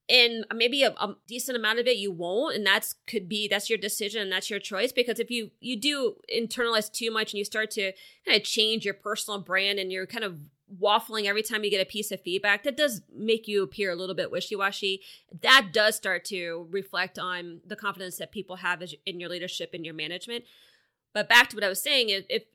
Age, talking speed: 20-39, 230 wpm